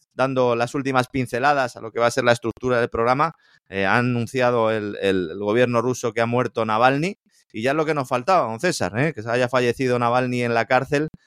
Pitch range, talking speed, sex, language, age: 110-125 Hz, 230 wpm, male, Spanish, 30-49